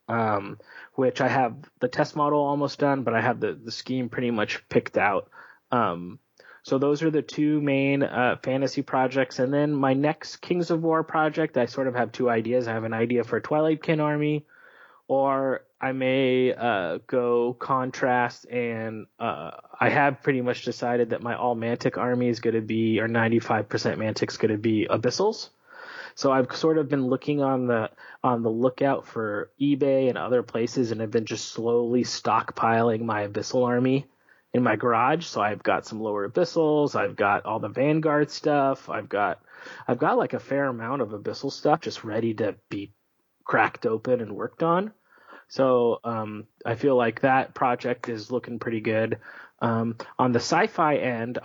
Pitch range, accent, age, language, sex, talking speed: 115-145 Hz, American, 20-39, English, male, 185 wpm